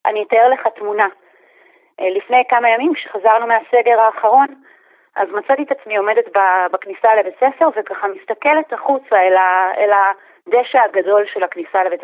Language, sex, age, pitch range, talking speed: Hebrew, female, 30-49, 210-305 Hz, 135 wpm